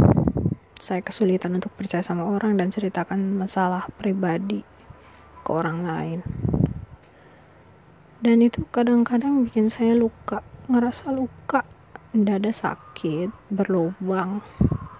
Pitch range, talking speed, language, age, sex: 170-220 Hz, 95 wpm, Indonesian, 20-39, female